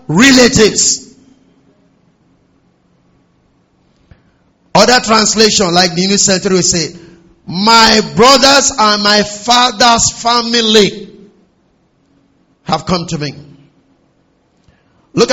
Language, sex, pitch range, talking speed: English, male, 195-245 Hz, 80 wpm